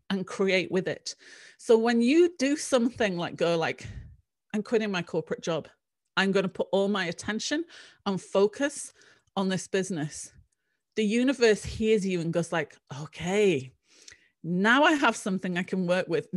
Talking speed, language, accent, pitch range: 165 wpm, English, British, 180-235 Hz